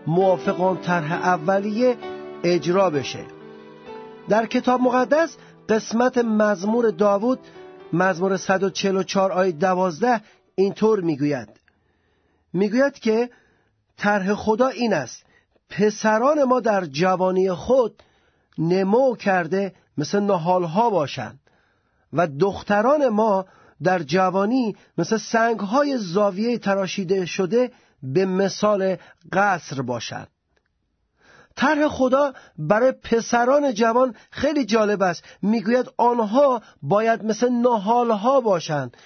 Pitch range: 180-240 Hz